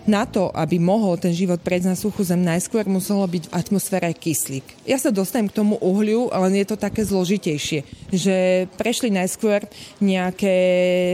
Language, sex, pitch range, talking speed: Slovak, female, 175-205 Hz, 165 wpm